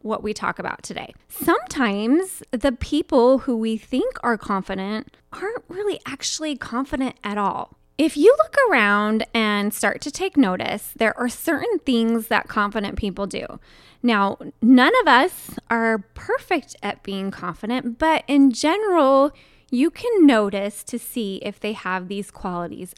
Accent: American